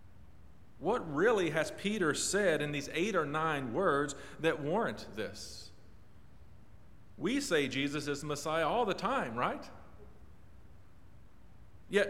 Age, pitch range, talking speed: 40-59, 100-160 Hz, 125 wpm